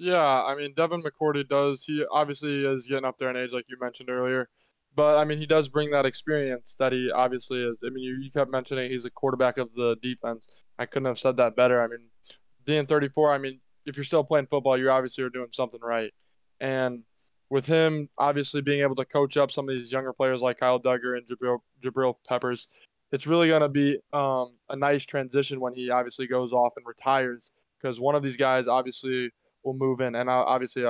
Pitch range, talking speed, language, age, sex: 125-140 Hz, 220 wpm, English, 20-39, male